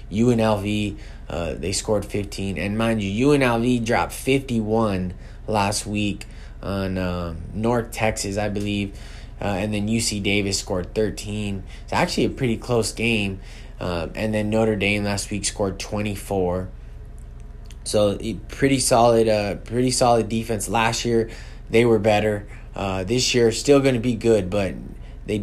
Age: 20-39